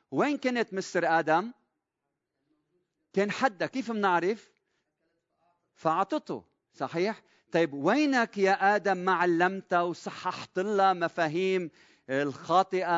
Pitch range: 155-200 Hz